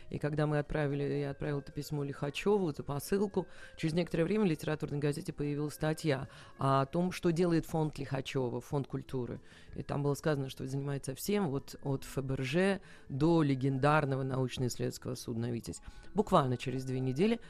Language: Russian